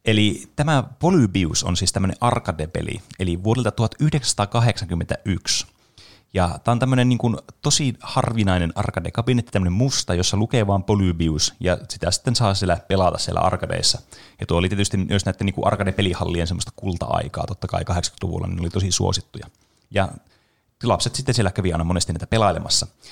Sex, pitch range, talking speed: male, 90-115 Hz, 150 wpm